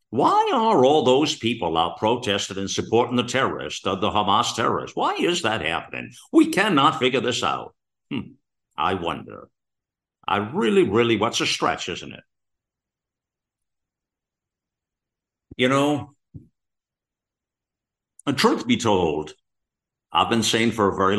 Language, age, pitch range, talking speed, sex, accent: English, 50-69, 95-115 Hz, 135 wpm, male, American